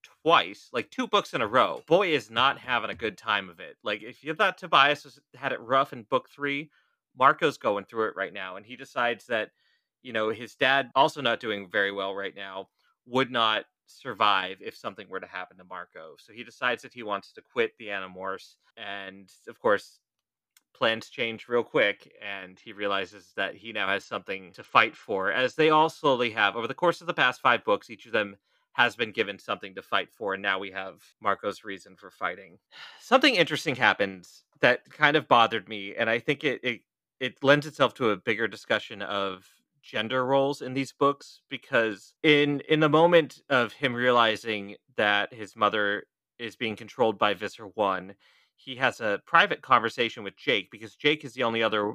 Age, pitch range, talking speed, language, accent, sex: 30-49, 100-140 Hz, 200 wpm, English, American, male